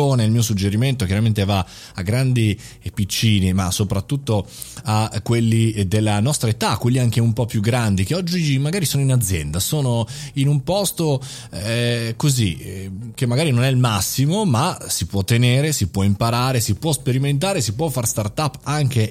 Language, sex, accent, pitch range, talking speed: Italian, male, native, 100-130 Hz, 180 wpm